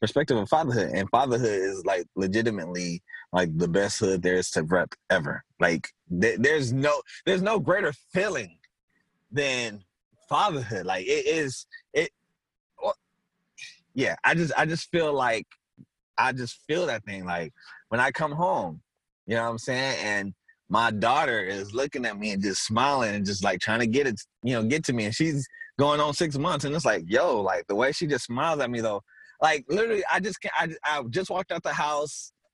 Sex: male